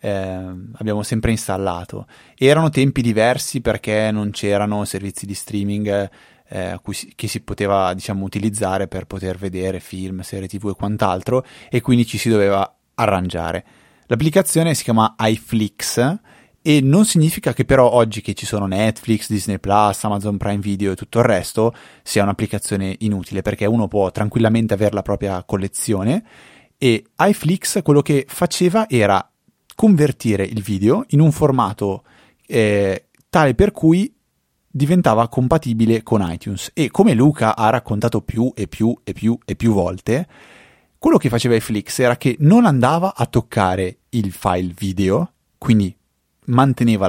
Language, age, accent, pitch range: Italian, 20-39, native, 100-130 Hz